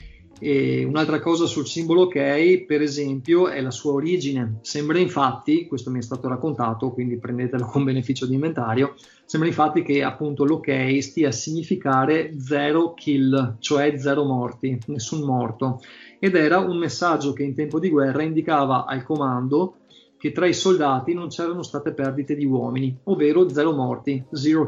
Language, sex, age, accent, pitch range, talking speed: Italian, male, 30-49, native, 130-150 Hz, 160 wpm